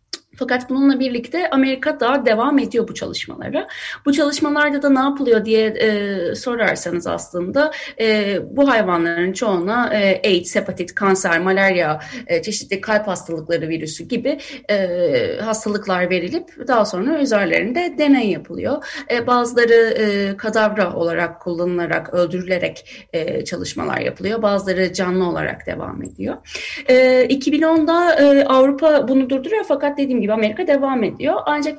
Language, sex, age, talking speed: Turkish, female, 30-49, 130 wpm